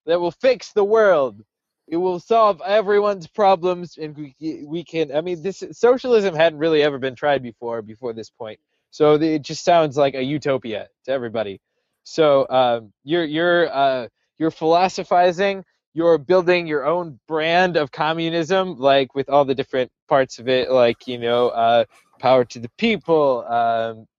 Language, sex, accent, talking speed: English, male, American, 165 wpm